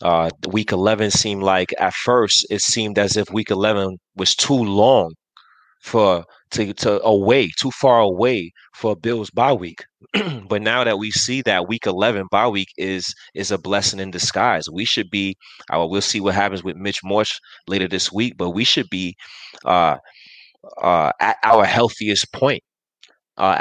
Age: 30-49